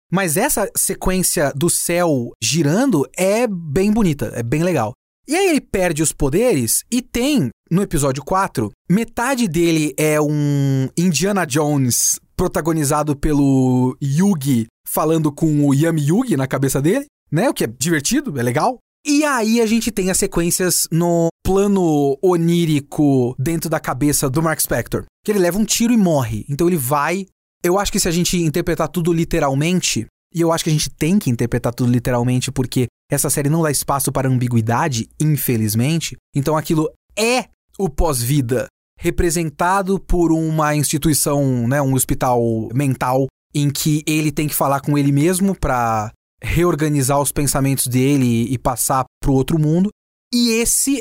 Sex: male